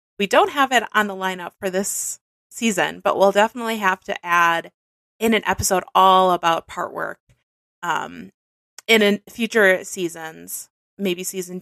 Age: 20-39